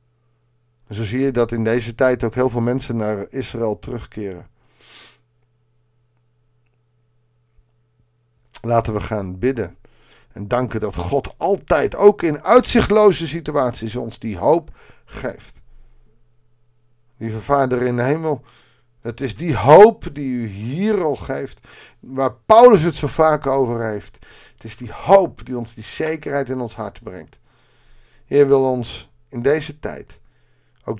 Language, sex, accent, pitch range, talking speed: Dutch, male, Dutch, 115-140 Hz, 140 wpm